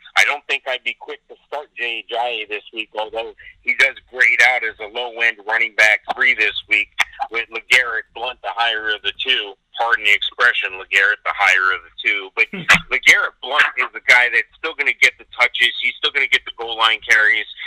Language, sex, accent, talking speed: English, male, American, 215 wpm